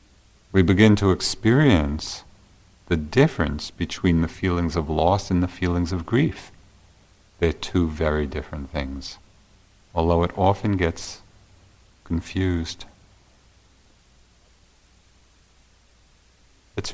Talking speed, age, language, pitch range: 95 wpm, 50-69, English, 80-100 Hz